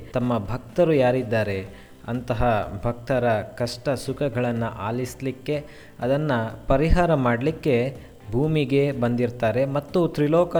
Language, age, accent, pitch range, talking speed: Kannada, 20-39, native, 120-150 Hz, 85 wpm